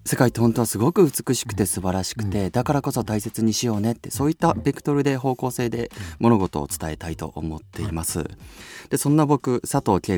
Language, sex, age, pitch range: Japanese, male, 30-49, 85-120 Hz